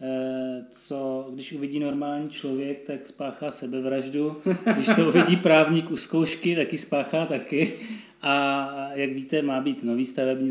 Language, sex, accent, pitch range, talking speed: Czech, male, native, 140-165 Hz, 135 wpm